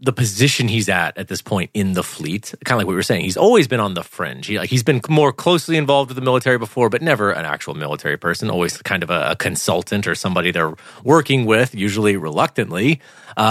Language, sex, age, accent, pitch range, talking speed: English, male, 30-49, American, 105-140 Hz, 255 wpm